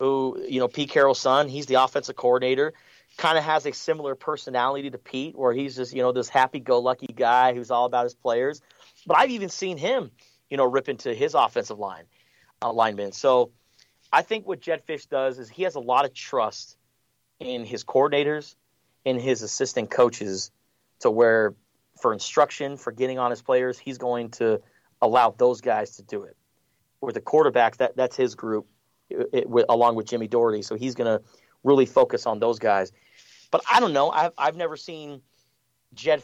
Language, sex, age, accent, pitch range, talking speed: English, male, 30-49, American, 120-145 Hz, 190 wpm